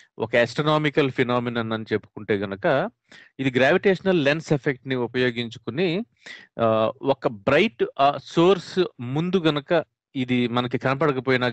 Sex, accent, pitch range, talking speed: male, native, 105-150 Hz, 105 wpm